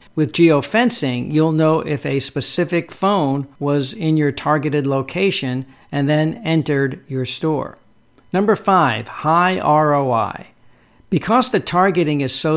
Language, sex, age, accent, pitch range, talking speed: English, male, 60-79, American, 135-170 Hz, 130 wpm